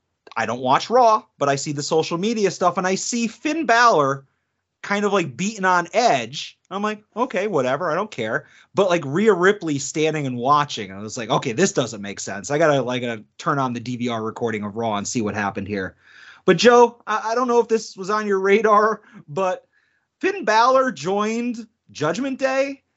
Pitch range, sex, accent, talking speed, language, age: 140-195 Hz, male, American, 205 wpm, English, 30-49